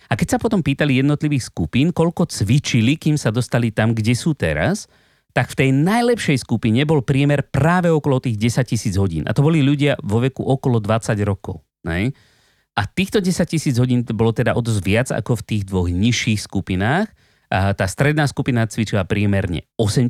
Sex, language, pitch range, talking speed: male, Slovak, 100-145 Hz, 175 wpm